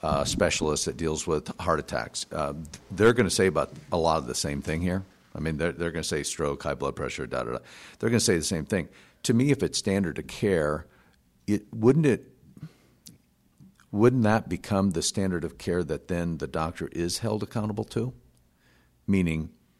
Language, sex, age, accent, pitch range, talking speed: English, male, 50-69, American, 75-95 Hz, 195 wpm